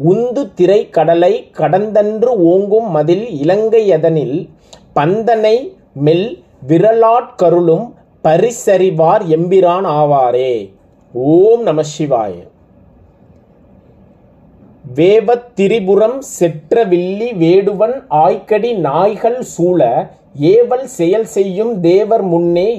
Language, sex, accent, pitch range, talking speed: Tamil, male, native, 170-230 Hz, 70 wpm